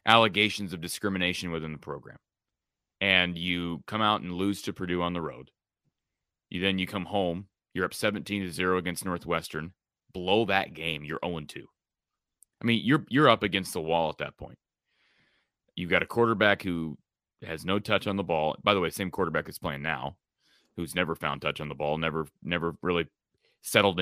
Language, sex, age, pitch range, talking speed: English, male, 30-49, 85-105 Hz, 190 wpm